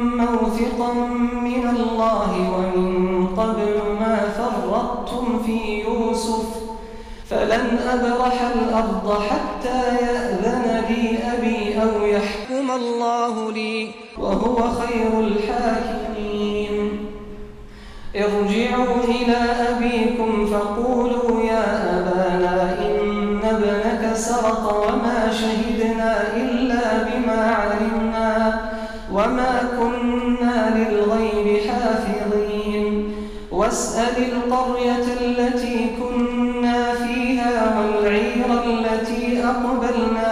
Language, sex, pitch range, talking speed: Arabic, male, 215-240 Hz, 70 wpm